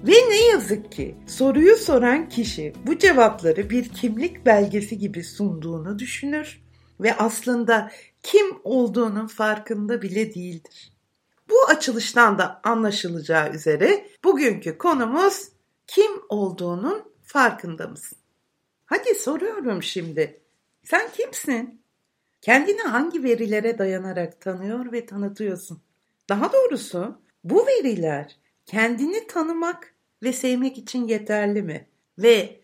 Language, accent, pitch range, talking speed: Turkish, native, 195-300 Hz, 105 wpm